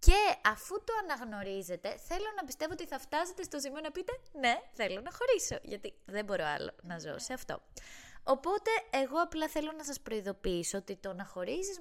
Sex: female